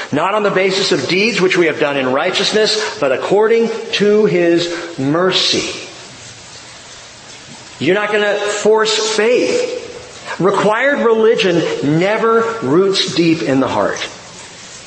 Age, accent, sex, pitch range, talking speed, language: 40-59, American, male, 175-240 Hz, 125 wpm, English